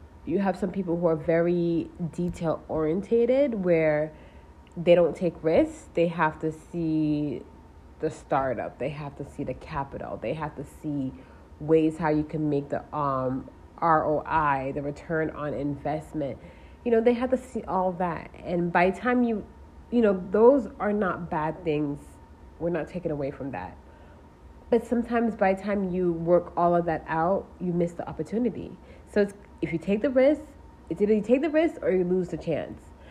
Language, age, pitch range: English, 30-49, 150-195 Hz